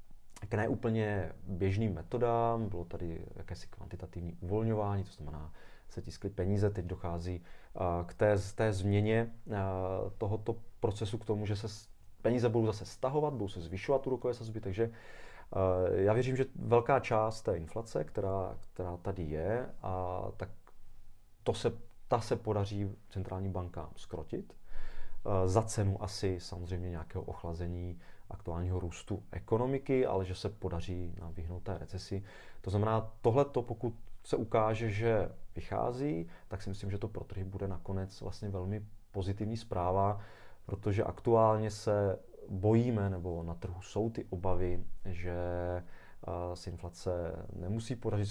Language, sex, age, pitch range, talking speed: Czech, male, 30-49, 90-110 Hz, 135 wpm